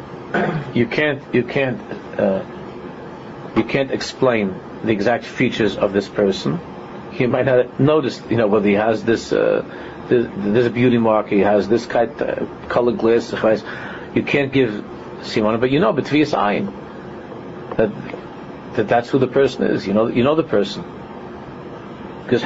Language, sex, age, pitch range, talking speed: English, male, 50-69, 115-135 Hz, 160 wpm